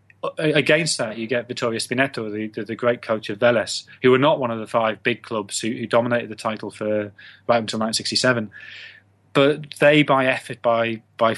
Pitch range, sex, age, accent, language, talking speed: 115-140 Hz, male, 30-49, British, English, 195 wpm